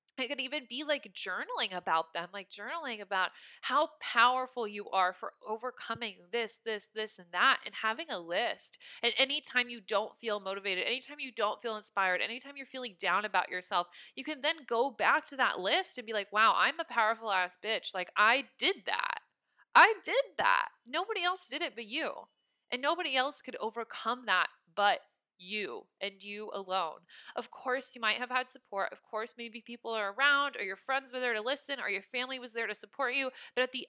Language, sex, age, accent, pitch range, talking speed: English, female, 20-39, American, 195-265 Hz, 205 wpm